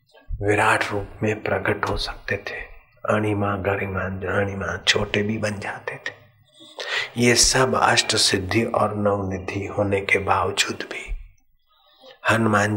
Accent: native